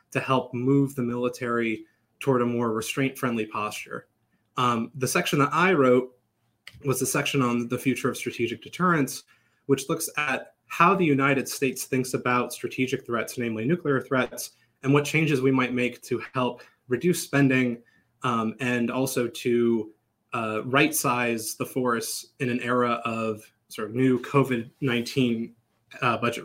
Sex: male